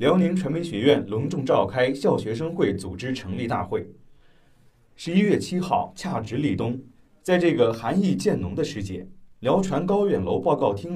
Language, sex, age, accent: Chinese, male, 30-49, native